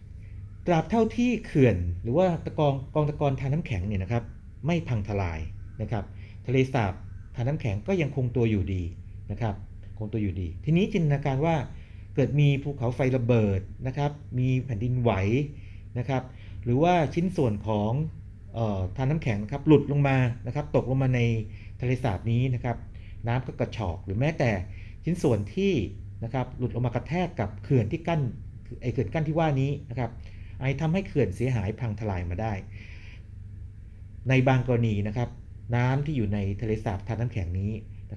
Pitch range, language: 100-135 Hz, Thai